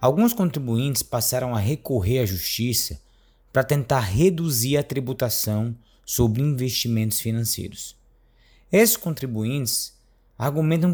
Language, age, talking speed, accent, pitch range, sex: Portuguese, 20-39, 100 wpm, Brazilian, 110-145 Hz, male